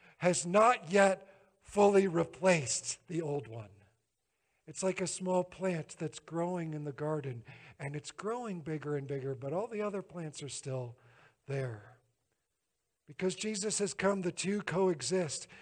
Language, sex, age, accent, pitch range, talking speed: English, male, 50-69, American, 145-190 Hz, 150 wpm